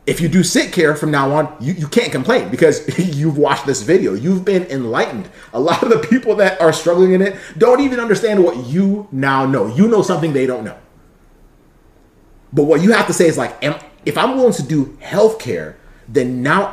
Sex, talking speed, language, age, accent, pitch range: male, 210 wpm, English, 30-49, American, 135-180 Hz